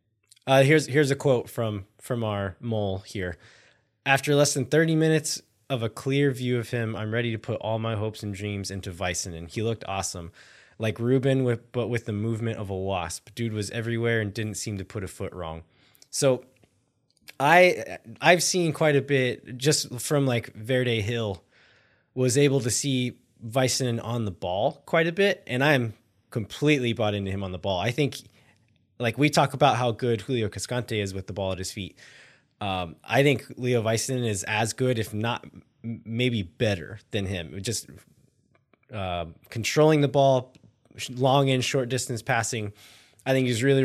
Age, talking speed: 20-39, 180 wpm